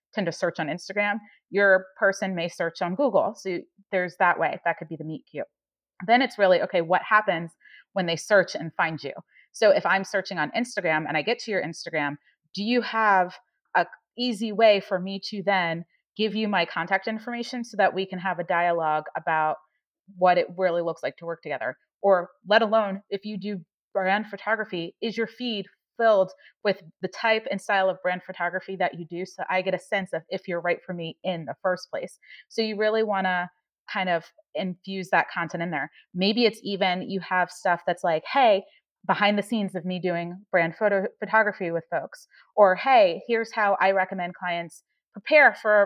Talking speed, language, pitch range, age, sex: 205 wpm, English, 175-215 Hz, 30-49, female